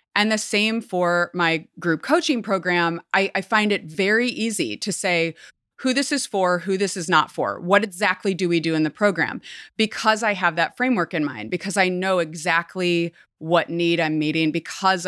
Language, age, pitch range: English, 30-49, 165-200 Hz